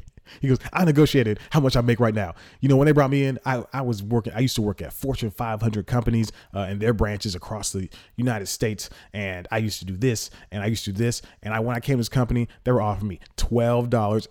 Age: 30-49